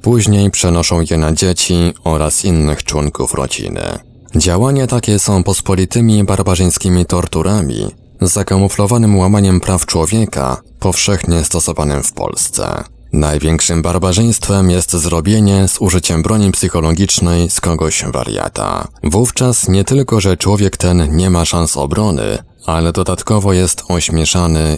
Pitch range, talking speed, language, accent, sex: 80-100 Hz, 120 wpm, Polish, native, male